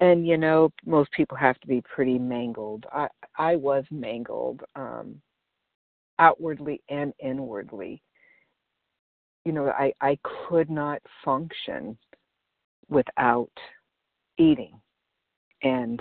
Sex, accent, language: female, American, English